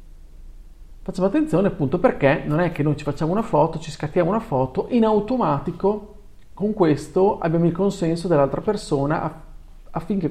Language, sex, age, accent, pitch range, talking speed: Italian, male, 40-59, native, 120-190 Hz, 150 wpm